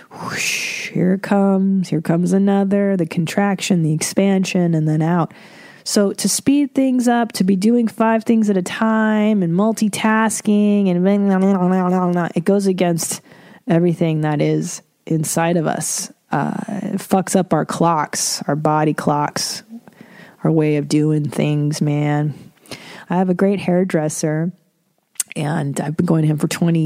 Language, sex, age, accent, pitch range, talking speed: English, female, 30-49, American, 165-210 Hz, 145 wpm